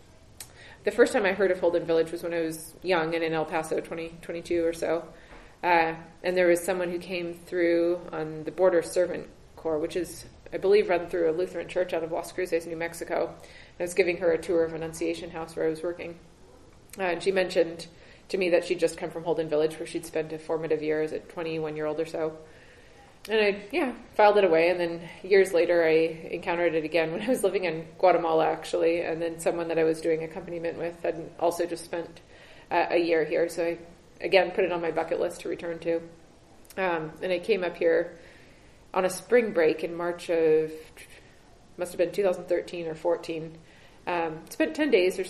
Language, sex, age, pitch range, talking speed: English, female, 20-39, 160-180 Hz, 210 wpm